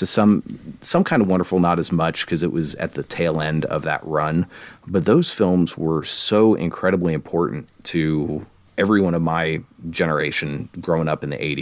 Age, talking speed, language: 30-49, 180 wpm, English